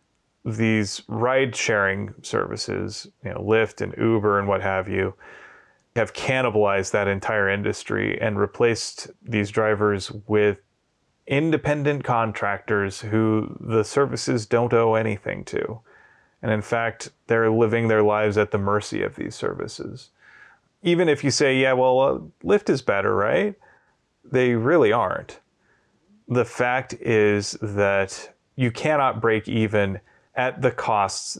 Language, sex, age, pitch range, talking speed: English, male, 30-49, 105-120 Hz, 130 wpm